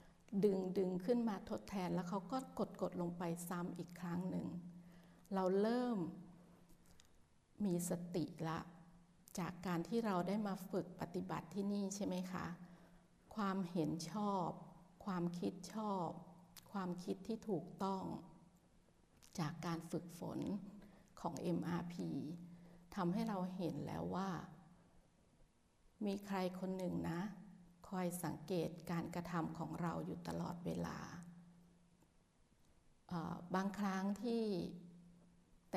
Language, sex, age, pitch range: Thai, female, 60-79, 175-195 Hz